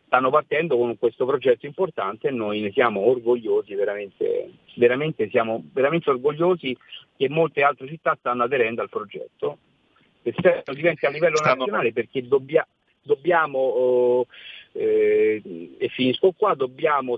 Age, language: 50-69, Italian